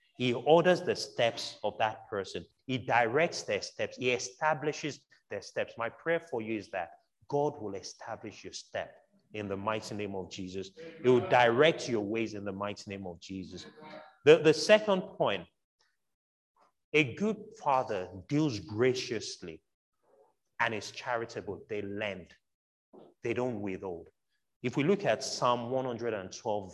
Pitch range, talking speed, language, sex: 105-150 Hz, 150 wpm, English, male